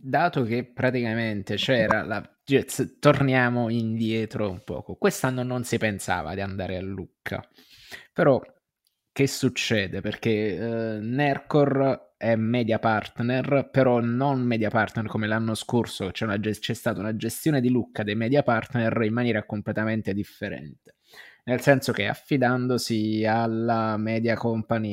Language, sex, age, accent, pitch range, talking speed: Italian, male, 20-39, native, 105-125 Hz, 130 wpm